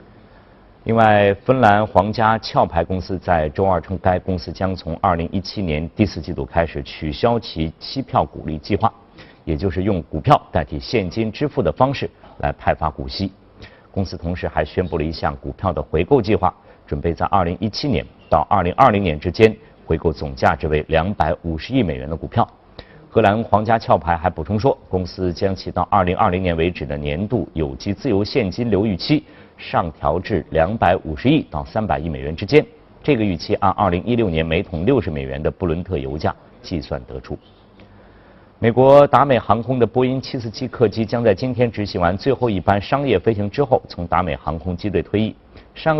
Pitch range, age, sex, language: 85-110 Hz, 50-69, male, Chinese